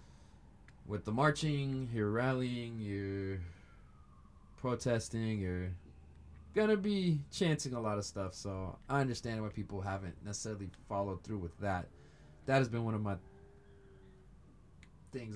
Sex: male